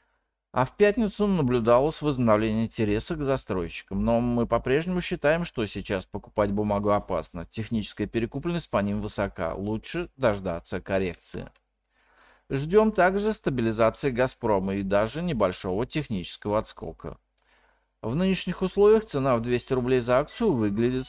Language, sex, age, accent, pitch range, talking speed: Russian, male, 40-59, native, 105-160 Hz, 125 wpm